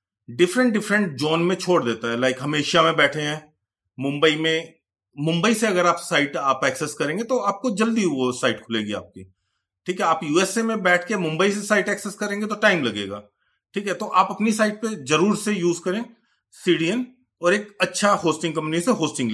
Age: 40-59